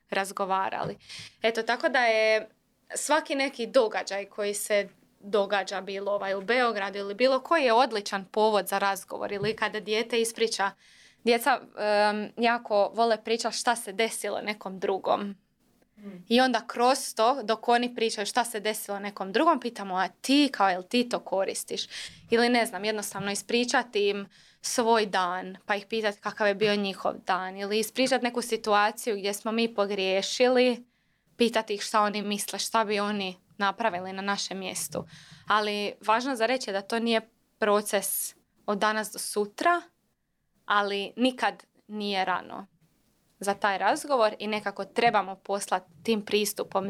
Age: 20-39